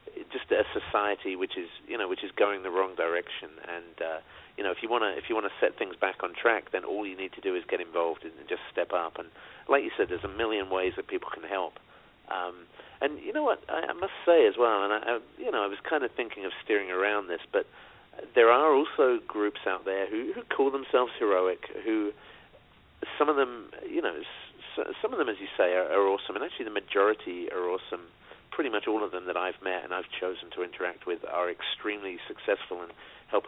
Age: 40-59